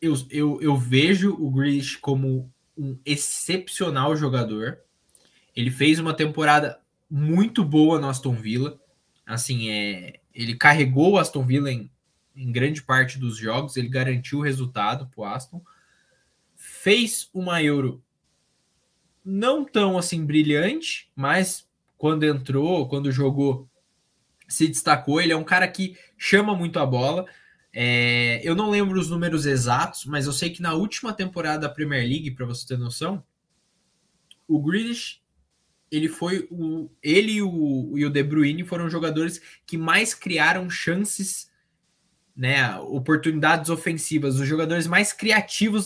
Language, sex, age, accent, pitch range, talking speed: Portuguese, male, 20-39, Brazilian, 135-180 Hz, 145 wpm